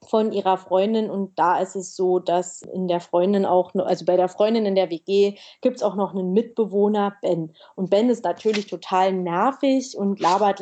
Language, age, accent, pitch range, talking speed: German, 30-49, German, 195-240 Hz, 200 wpm